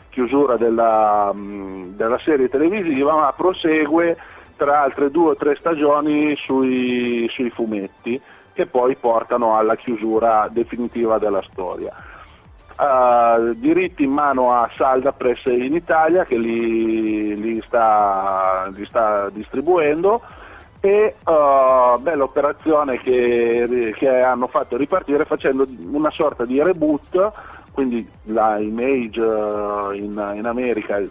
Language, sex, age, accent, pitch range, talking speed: Italian, male, 40-59, native, 115-145 Hz, 115 wpm